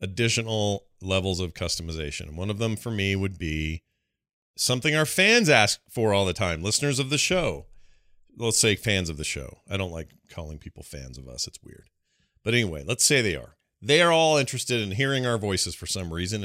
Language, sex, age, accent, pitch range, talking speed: English, male, 40-59, American, 90-120 Hz, 205 wpm